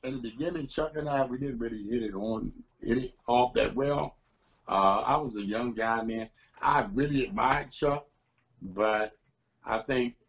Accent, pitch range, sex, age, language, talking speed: American, 100-135 Hz, male, 60-79, English, 180 wpm